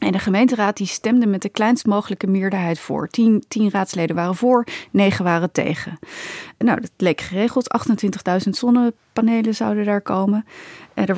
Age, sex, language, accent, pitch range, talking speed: 30-49, female, Dutch, Dutch, 195-245 Hz, 155 wpm